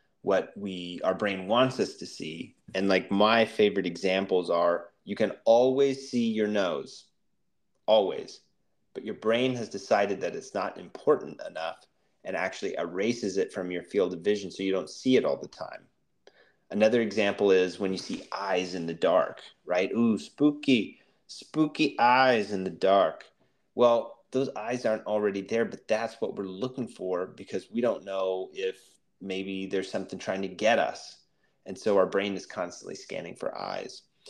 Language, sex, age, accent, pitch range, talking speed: English, male, 30-49, American, 95-115 Hz, 175 wpm